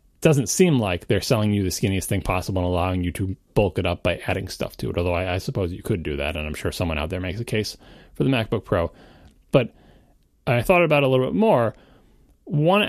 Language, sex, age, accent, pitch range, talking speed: English, male, 30-49, American, 100-145 Hz, 245 wpm